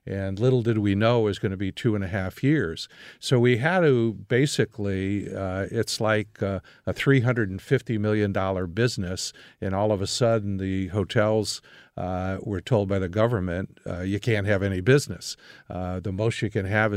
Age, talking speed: 50-69, 185 wpm